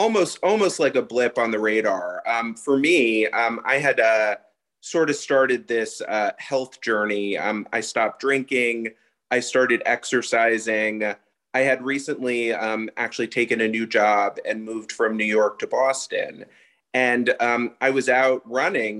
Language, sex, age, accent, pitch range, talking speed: English, male, 30-49, American, 110-130 Hz, 160 wpm